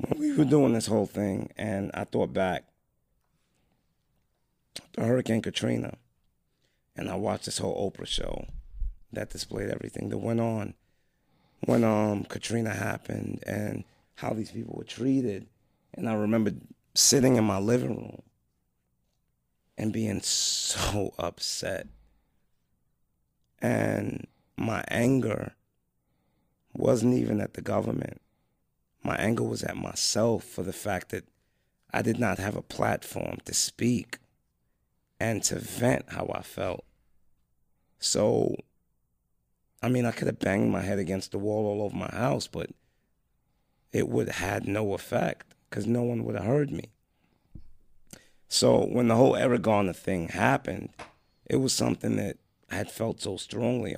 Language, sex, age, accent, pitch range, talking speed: English, male, 30-49, American, 85-115 Hz, 140 wpm